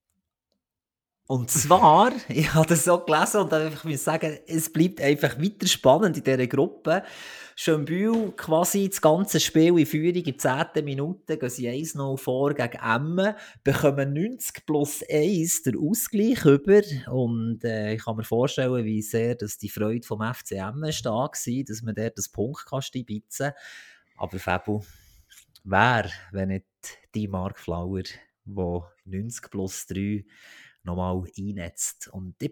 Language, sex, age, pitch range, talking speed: German, male, 30-49, 105-150 Hz, 150 wpm